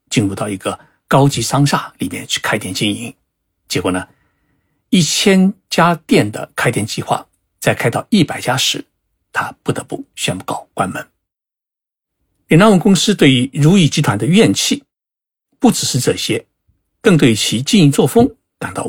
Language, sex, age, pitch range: Chinese, male, 60-79, 120-170 Hz